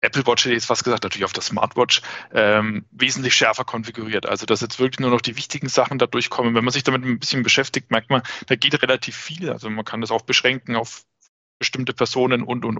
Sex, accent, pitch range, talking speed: male, German, 115-140 Hz, 235 wpm